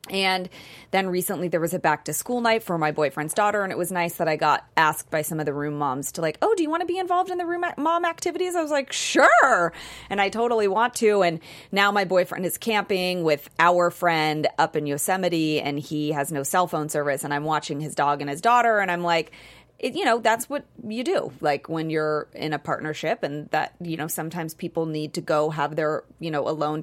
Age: 30-49